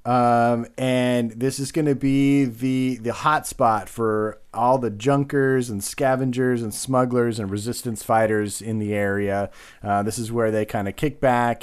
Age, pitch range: 30-49, 105-125 Hz